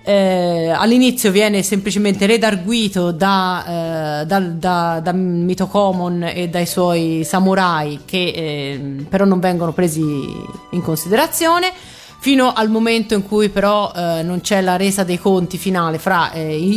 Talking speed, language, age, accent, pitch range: 130 wpm, Italian, 30-49, native, 170-205 Hz